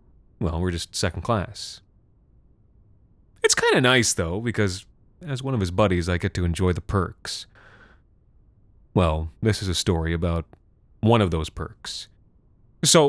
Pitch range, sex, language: 95-120 Hz, male, English